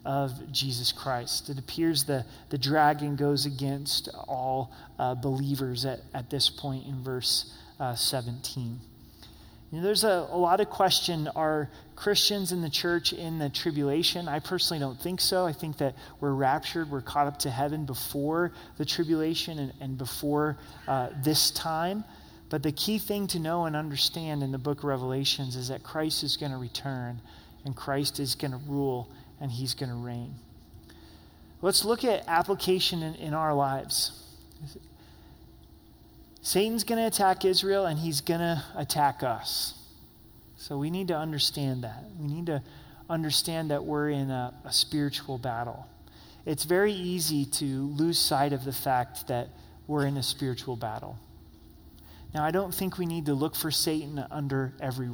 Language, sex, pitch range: English, male, 130-160 Hz